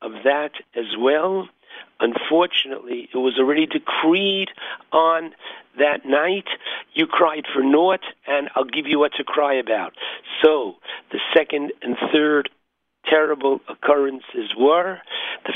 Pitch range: 135-165 Hz